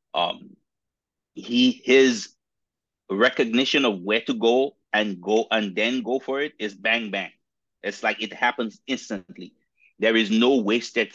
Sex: male